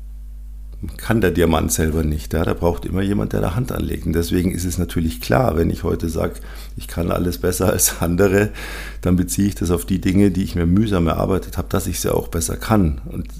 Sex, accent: male, German